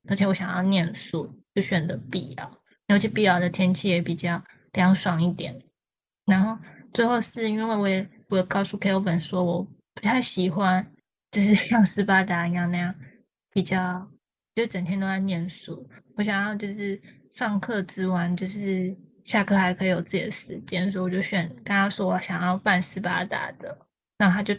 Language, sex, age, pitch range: Chinese, female, 20-39, 185-210 Hz